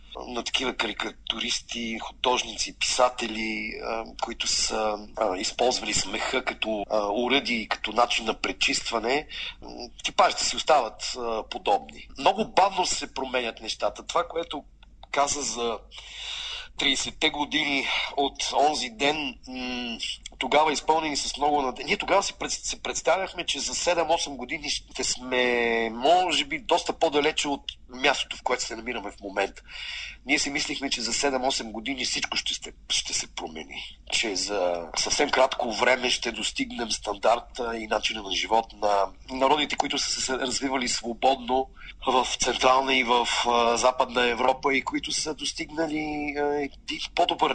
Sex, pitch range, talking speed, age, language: male, 120-150 Hz, 135 wpm, 40-59, Bulgarian